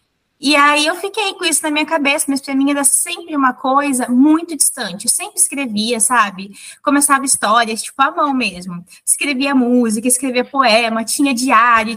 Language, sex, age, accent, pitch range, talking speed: Portuguese, female, 20-39, Brazilian, 225-290 Hz, 170 wpm